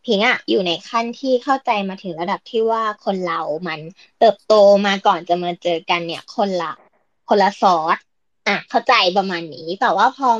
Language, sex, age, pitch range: Thai, female, 20-39, 190-250 Hz